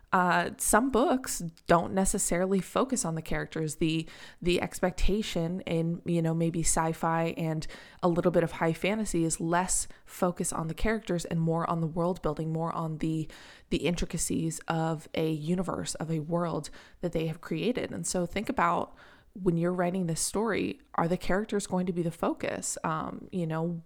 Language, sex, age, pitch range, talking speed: English, female, 20-39, 160-185 Hz, 180 wpm